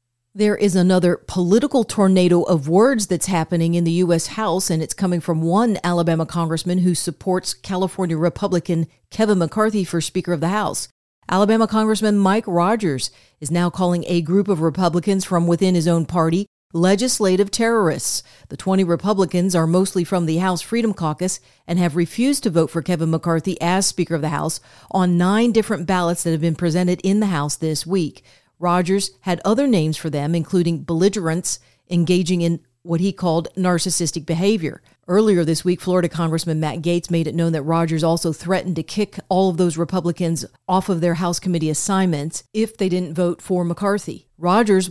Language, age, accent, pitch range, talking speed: English, 40-59, American, 165-190 Hz, 180 wpm